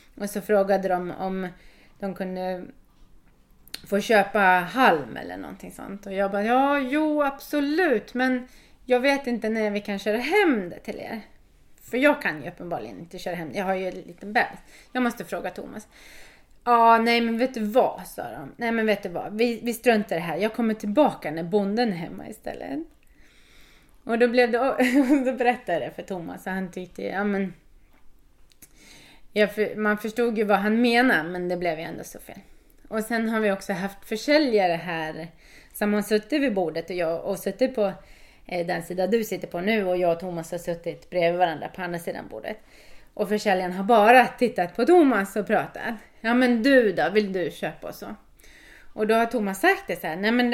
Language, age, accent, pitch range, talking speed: Swedish, 30-49, native, 185-245 Hz, 200 wpm